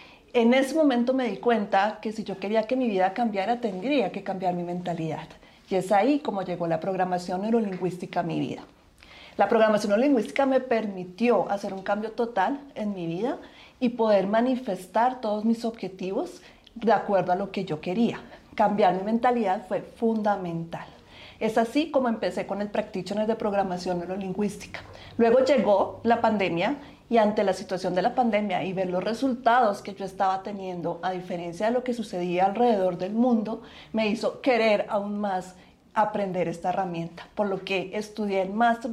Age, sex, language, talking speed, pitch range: 40-59, female, Spanish, 175 wpm, 185-230 Hz